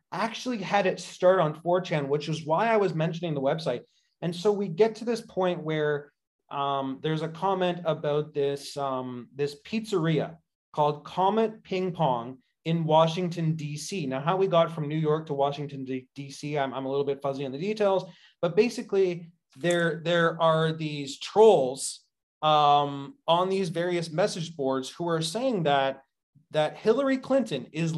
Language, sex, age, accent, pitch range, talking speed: English, male, 30-49, American, 150-185 Hz, 165 wpm